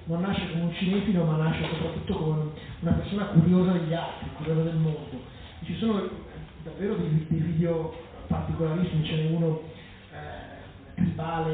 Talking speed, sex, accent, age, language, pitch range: 140 wpm, male, native, 30-49, Italian, 160-180 Hz